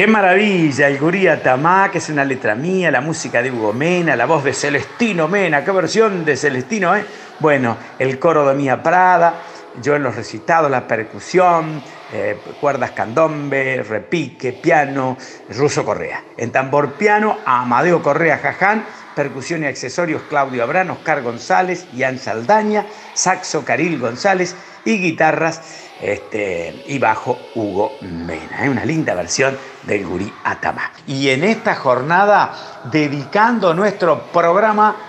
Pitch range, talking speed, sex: 130-185 Hz, 140 wpm, male